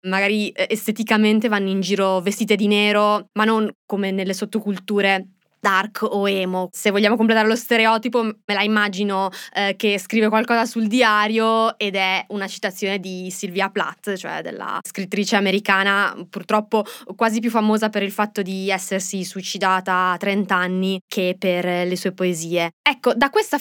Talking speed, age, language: 160 wpm, 20-39, Italian